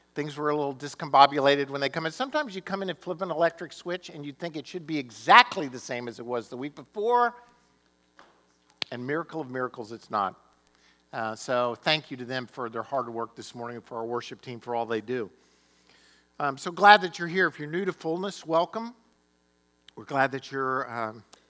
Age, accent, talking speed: 50-69, American, 210 wpm